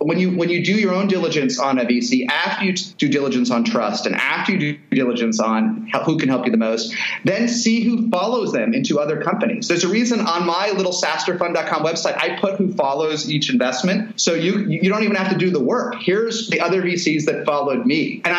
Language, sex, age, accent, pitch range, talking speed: English, male, 30-49, American, 150-205 Hz, 225 wpm